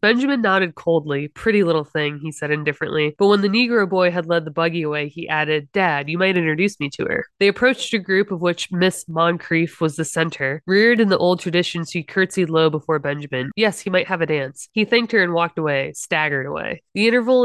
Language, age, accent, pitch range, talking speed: English, 20-39, American, 150-180 Hz, 225 wpm